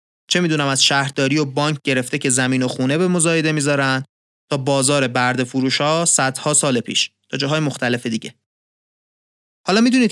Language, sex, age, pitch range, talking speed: Persian, male, 30-49, 130-165 Hz, 160 wpm